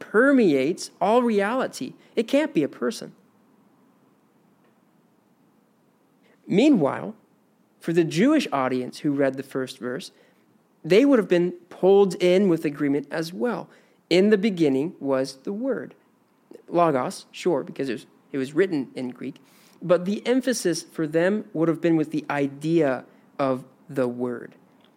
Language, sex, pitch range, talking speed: English, male, 140-210 Hz, 135 wpm